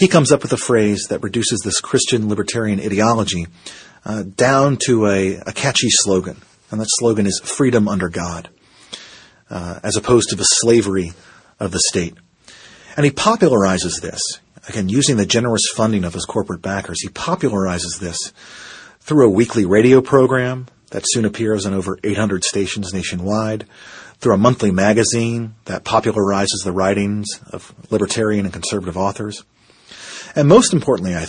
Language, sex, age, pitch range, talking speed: English, male, 40-59, 95-115 Hz, 155 wpm